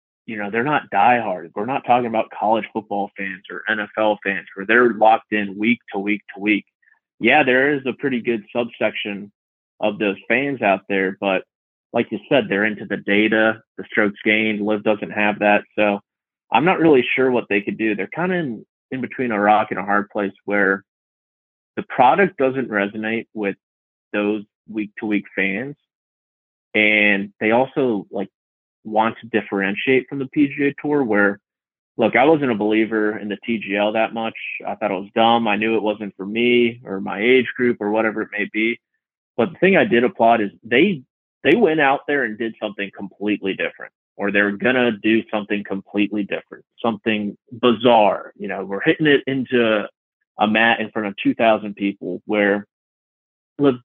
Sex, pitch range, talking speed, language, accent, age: male, 100-120 Hz, 185 wpm, English, American, 20-39